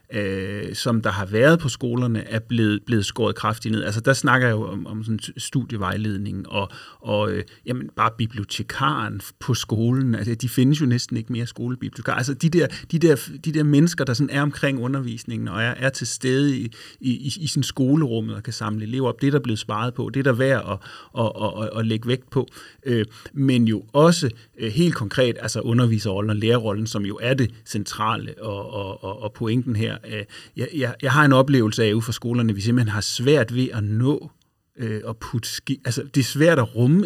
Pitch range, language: 110-140 Hz, Danish